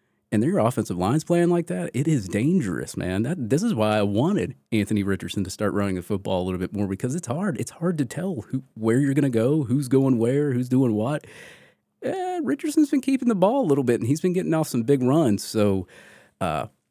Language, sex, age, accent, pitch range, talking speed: English, male, 30-49, American, 100-135 Hz, 235 wpm